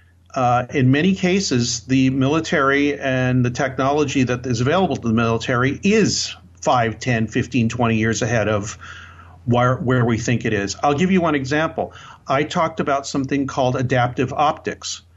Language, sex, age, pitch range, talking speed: English, male, 50-69, 110-135 Hz, 160 wpm